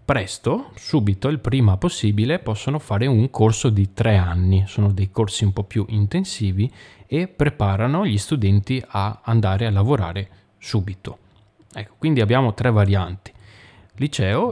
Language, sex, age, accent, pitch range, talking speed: Italian, male, 30-49, native, 100-115 Hz, 140 wpm